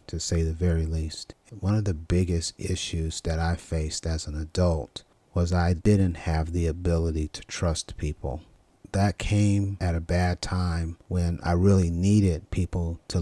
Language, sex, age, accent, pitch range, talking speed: English, male, 30-49, American, 85-95 Hz, 170 wpm